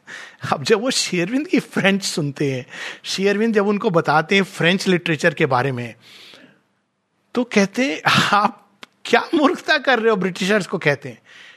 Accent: native